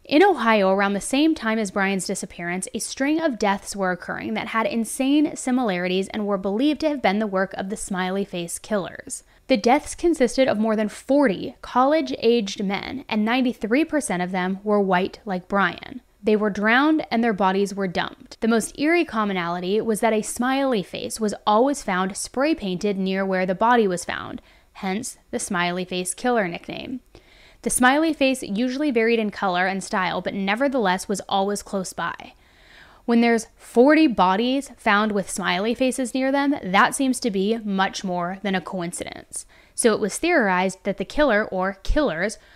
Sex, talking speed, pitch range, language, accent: female, 175 wpm, 195-255 Hz, English, American